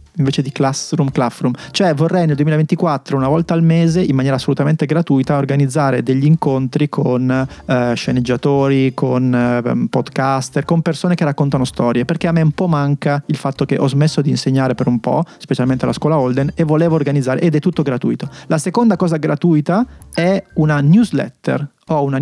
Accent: native